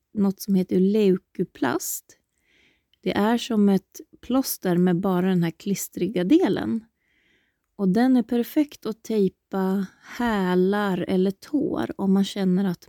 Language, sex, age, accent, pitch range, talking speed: Swedish, female, 30-49, native, 180-235 Hz, 130 wpm